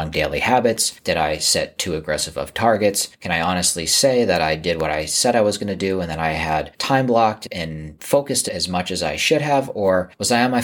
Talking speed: 245 wpm